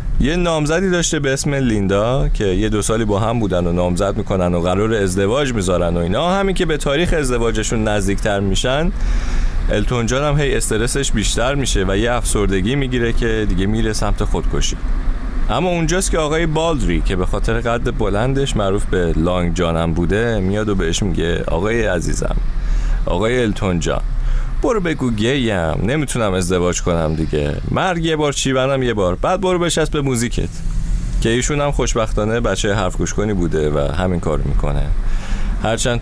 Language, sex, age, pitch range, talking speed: Persian, male, 30-49, 90-120 Hz, 165 wpm